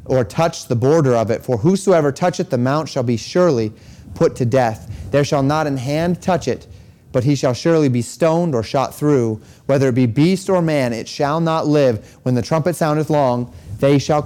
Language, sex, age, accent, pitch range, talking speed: English, male, 30-49, American, 135-180 Hz, 210 wpm